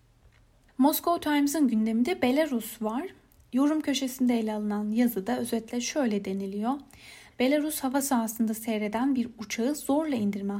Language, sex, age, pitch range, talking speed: Turkish, female, 10-29, 215-275 Hz, 120 wpm